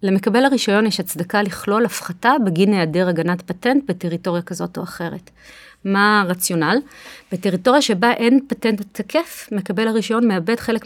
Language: Hebrew